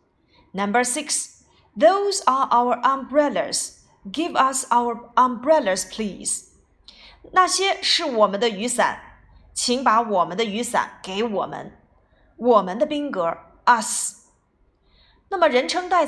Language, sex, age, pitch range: Chinese, female, 30-49, 205-290 Hz